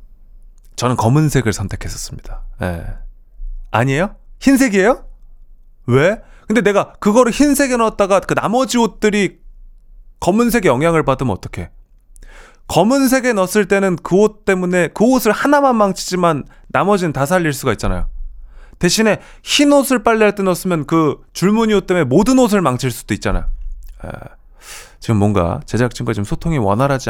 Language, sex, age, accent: Korean, male, 30-49, native